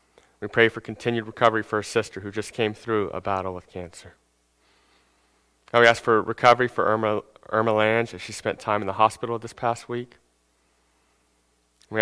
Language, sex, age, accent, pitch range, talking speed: English, male, 30-49, American, 85-110 Hz, 175 wpm